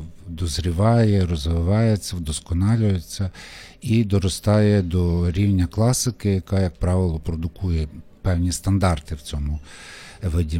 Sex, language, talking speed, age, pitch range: male, Ukrainian, 95 wpm, 50-69, 90-110 Hz